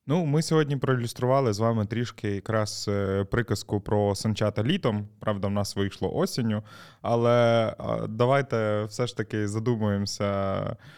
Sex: male